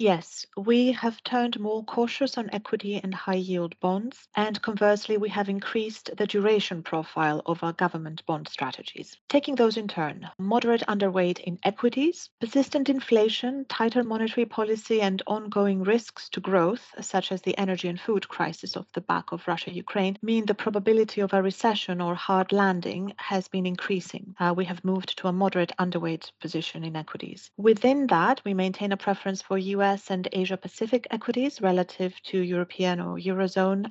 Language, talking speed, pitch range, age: English, 165 wpm, 180-220 Hz, 40-59